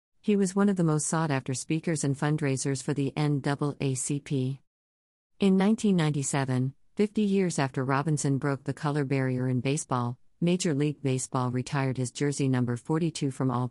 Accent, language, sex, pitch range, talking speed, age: American, English, female, 135-160 Hz, 160 wpm, 50-69